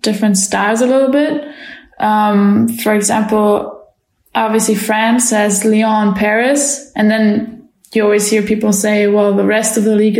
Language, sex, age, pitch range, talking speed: English, female, 10-29, 210-235 Hz, 155 wpm